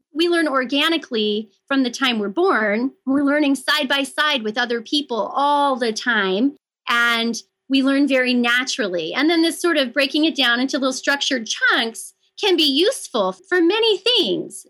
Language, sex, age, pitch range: English, female, 30-49, 220-295 Hz